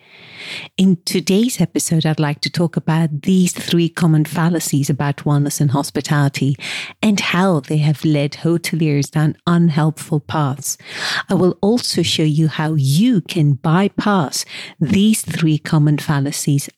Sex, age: female, 50-69